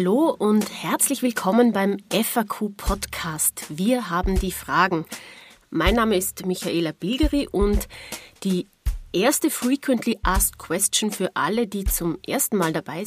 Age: 30-49